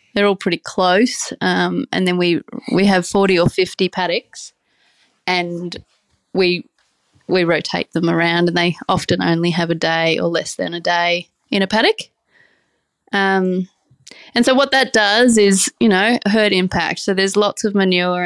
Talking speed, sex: 170 wpm, female